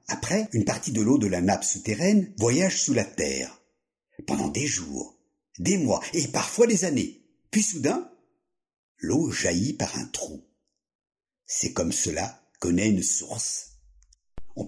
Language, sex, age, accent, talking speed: French, male, 60-79, French, 150 wpm